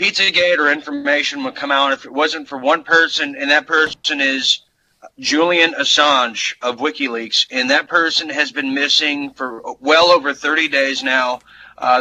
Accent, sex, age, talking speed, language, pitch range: American, male, 30-49, 165 wpm, English, 130-155 Hz